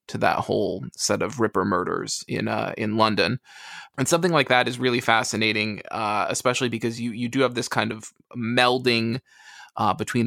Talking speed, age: 180 wpm, 20-39